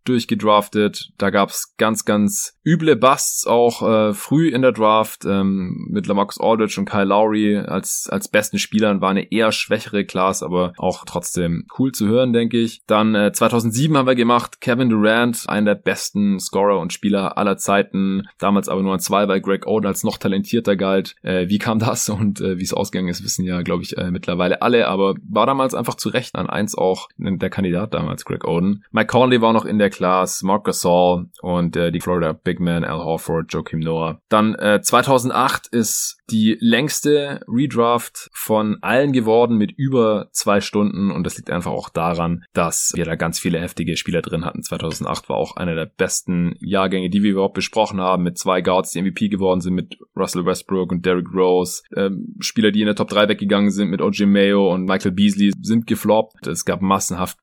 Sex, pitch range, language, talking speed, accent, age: male, 95-110 Hz, German, 200 wpm, German, 20-39